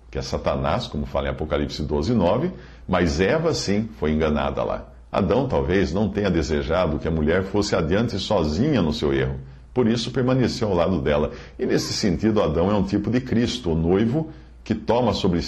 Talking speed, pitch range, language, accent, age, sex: 190 wpm, 75-110 Hz, Portuguese, Brazilian, 50-69, male